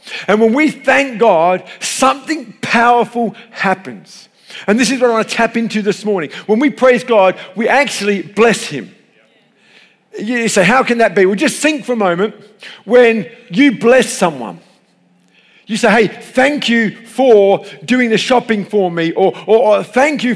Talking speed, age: 175 wpm, 50-69